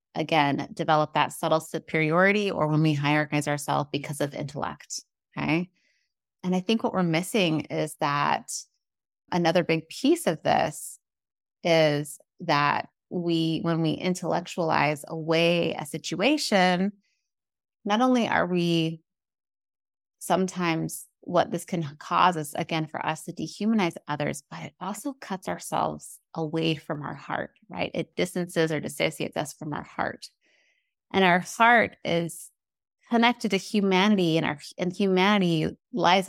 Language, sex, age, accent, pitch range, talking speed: English, female, 30-49, American, 160-190 Hz, 135 wpm